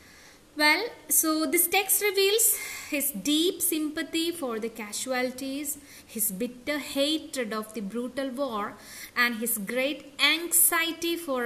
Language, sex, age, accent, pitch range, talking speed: English, female, 20-39, Indian, 220-295 Hz, 120 wpm